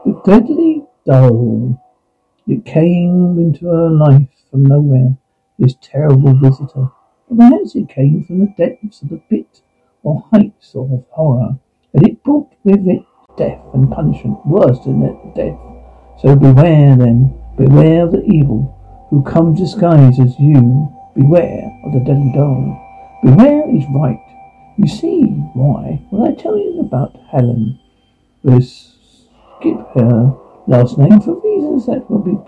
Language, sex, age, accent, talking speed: English, male, 60-79, British, 140 wpm